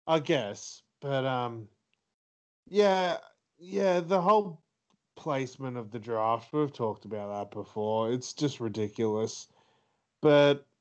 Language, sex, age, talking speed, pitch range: English, male, 20-39, 115 wpm, 115-145 Hz